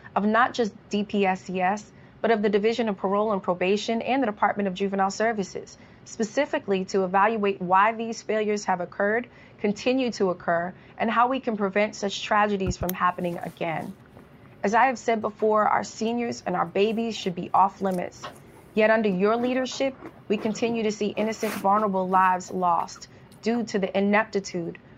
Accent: American